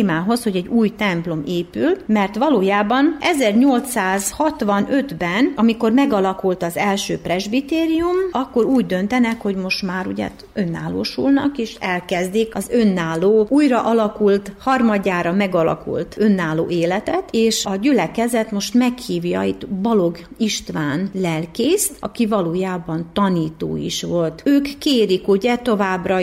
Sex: female